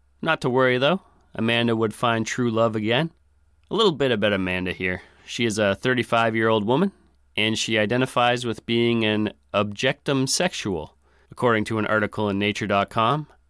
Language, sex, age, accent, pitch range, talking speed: English, male, 30-49, American, 95-120 Hz, 155 wpm